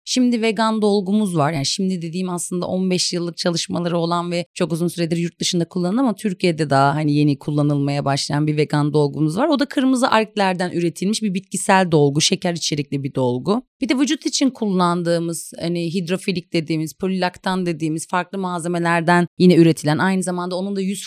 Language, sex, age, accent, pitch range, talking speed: Turkish, female, 30-49, native, 165-220 Hz, 175 wpm